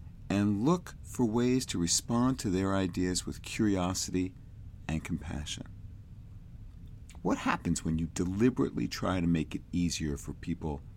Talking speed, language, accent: 135 wpm, English, American